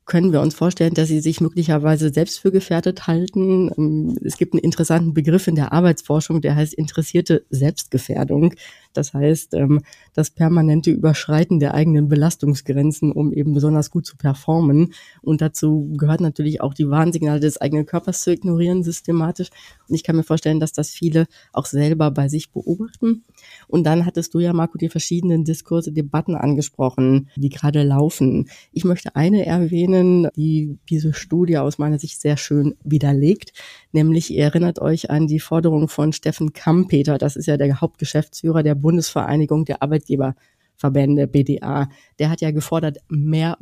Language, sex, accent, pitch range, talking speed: German, female, German, 150-170 Hz, 160 wpm